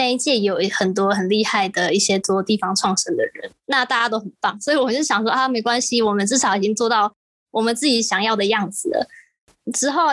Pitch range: 195-255 Hz